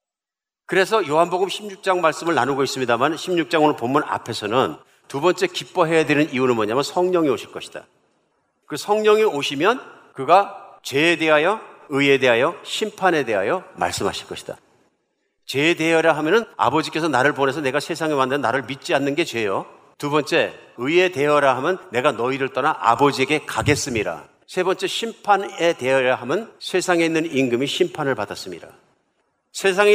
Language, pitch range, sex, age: Korean, 140-185 Hz, male, 50-69